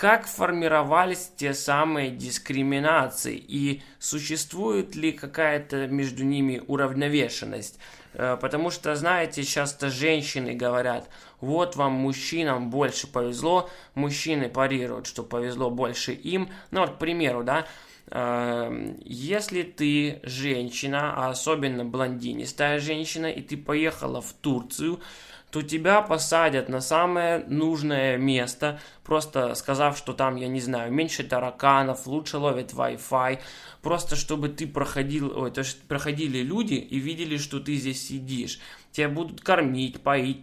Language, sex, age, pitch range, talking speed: Russian, male, 20-39, 130-155 Hz, 115 wpm